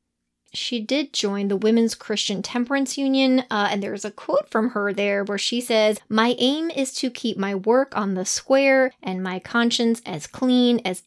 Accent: American